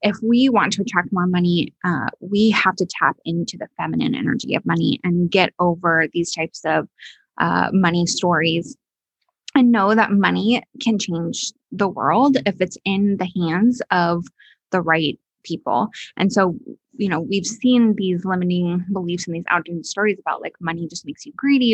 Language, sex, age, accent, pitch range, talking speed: English, female, 20-39, American, 175-215 Hz, 175 wpm